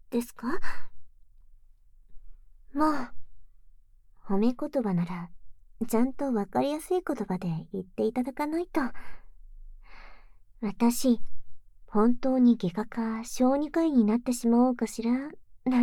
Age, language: 40-59, Japanese